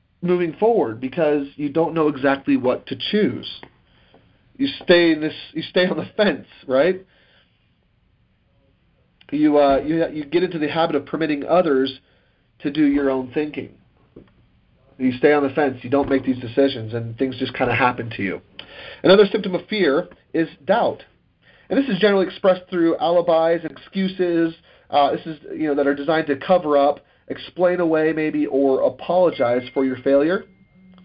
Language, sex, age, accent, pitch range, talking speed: English, male, 40-59, American, 135-175 Hz, 170 wpm